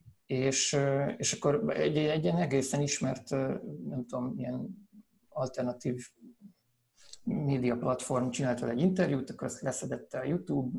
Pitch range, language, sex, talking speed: 120-145 Hz, Hungarian, male, 115 wpm